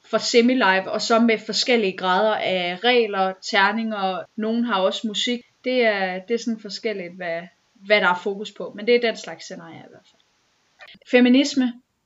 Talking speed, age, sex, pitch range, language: 185 wpm, 30-49, female, 205-250 Hz, Danish